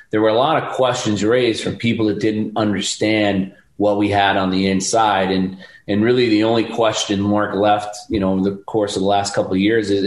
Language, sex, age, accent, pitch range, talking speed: English, male, 30-49, American, 100-110 Hz, 225 wpm